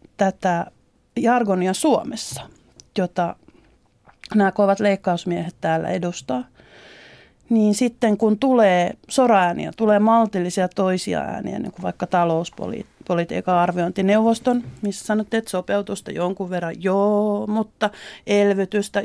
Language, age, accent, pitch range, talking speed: Finnish, 30-49, native, 190-245 Hz, 100 wpm